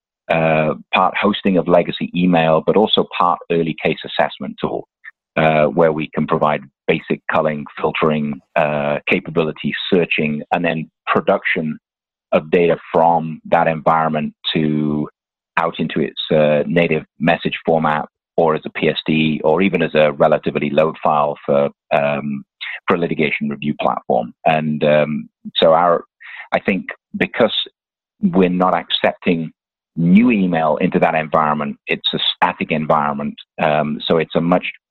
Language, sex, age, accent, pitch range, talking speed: English, male, 30-49, British, 75-85 Hz, 140 wpm